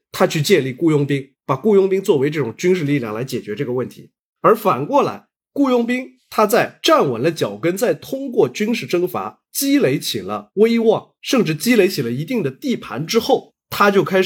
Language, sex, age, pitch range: Chinese, male, 30-49, 135-220 Hz